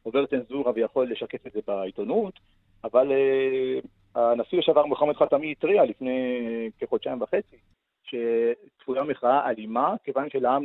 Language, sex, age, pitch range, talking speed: Hebrew, male, 40-59, 120-165 Hz, 125 wpm